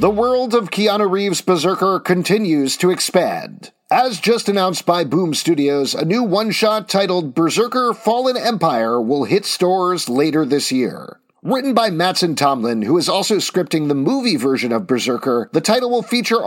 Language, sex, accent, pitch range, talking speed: English, male, American, 145-200 Hz, 165 wpm